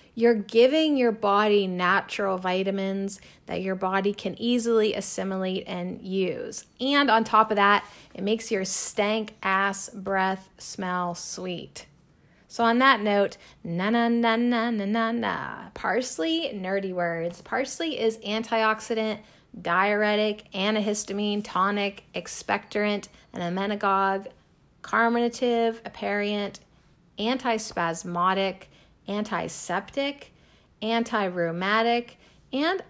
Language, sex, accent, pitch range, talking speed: English, female, American, 195-245 Hz, 95 wpm